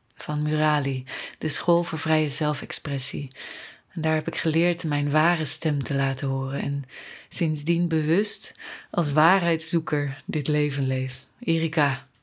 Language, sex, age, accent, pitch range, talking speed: Dutch, female, 30-49, Dutch, 130-170 Hz, 135 wpm